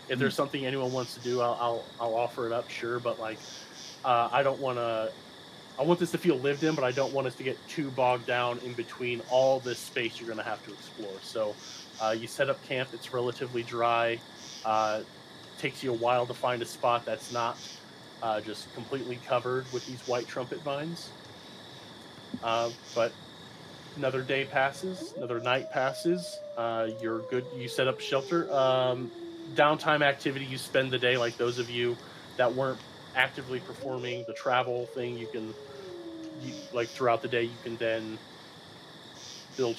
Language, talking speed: English, 180 wpm